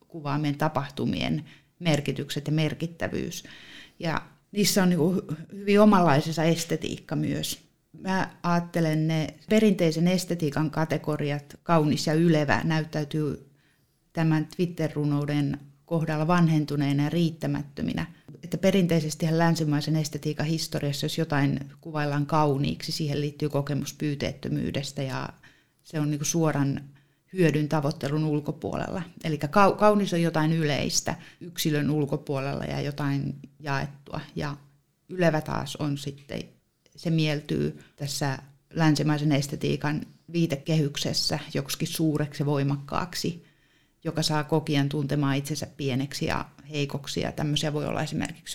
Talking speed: 110 wpm